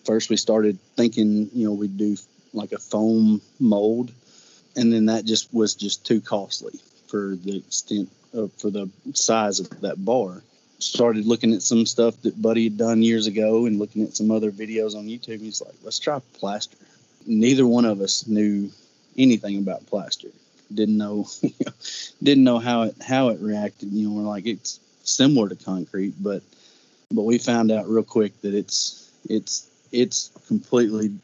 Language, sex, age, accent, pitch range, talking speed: English, male, 30-49, American, 105-115 Hz, 175 wpm